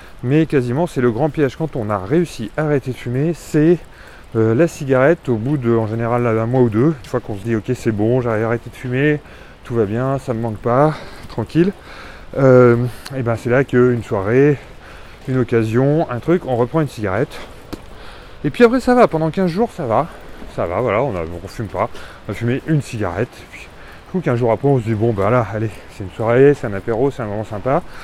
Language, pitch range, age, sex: French, 115-155 Hz, 30-49, male